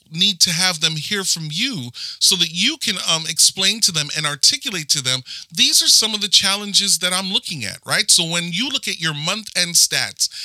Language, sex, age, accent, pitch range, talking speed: English, male, 40-59, American, 150-205 Hz, 225 wpm